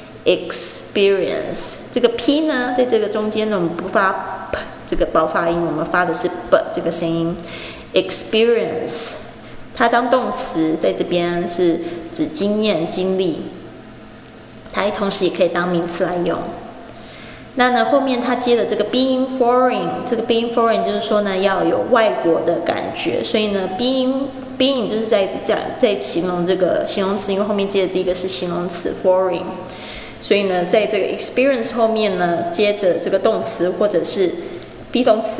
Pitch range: 180-235 Hz